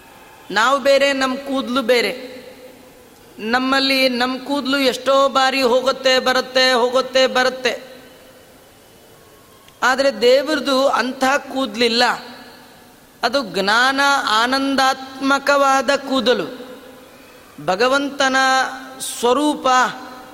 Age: 30-49